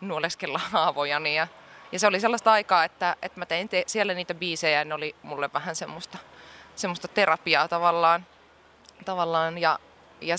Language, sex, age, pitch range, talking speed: Finnish, female, 20-39, 155-190 Hz, 160 wpm